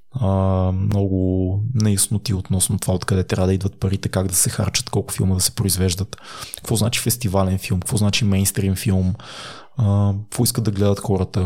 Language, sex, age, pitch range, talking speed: Bulgarian, male, 20-39, 100-120 Hz, 175 wpm